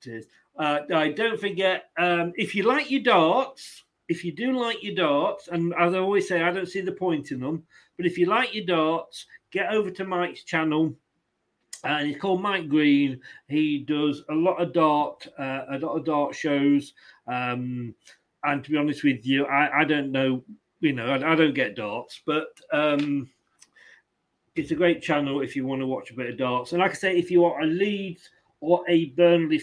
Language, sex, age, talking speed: English, male, 40-59, 205 wpm